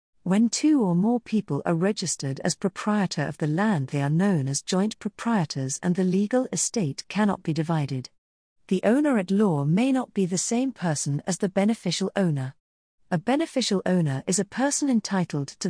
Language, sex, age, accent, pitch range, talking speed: English, female, 40-59, British, 155-210 Hz, 170 wpm